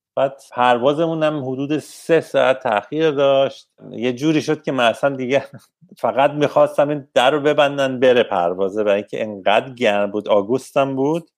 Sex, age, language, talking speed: male, 50-69, Persian, 155 wpm